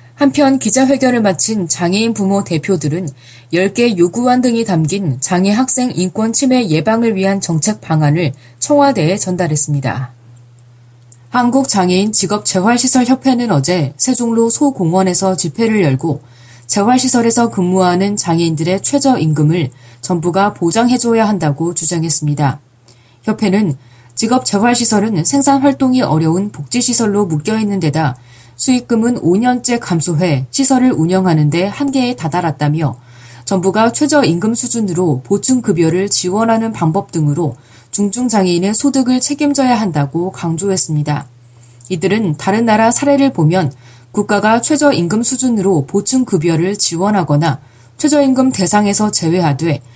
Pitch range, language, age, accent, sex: 155-230 Hz, Korean, 20-39, native, female